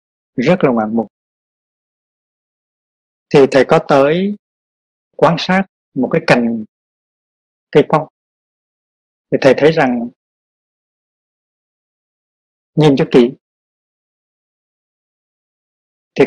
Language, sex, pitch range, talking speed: Vietnamese, male, 130-175 Hz, 85 wpm